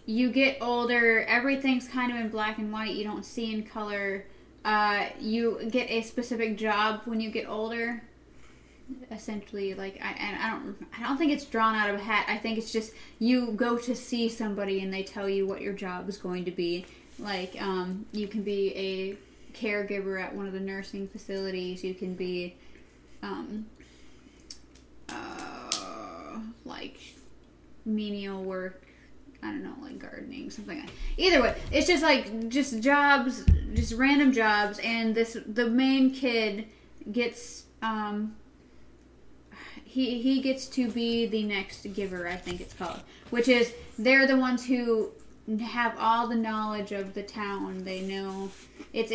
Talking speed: 160 wpm